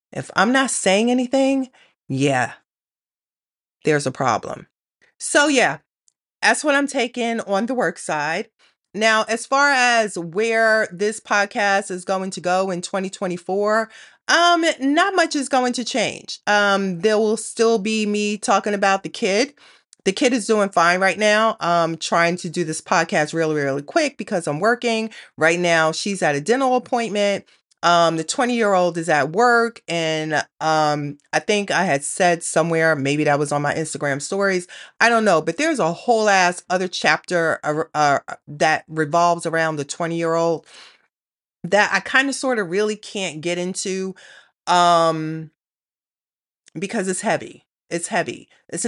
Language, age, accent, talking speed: English, 30-49, American, 165 wpm